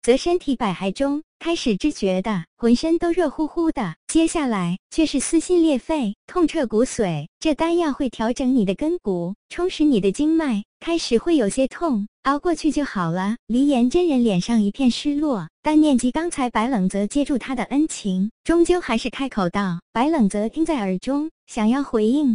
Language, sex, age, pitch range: Chinese, male, 20-39, 215-310 Hz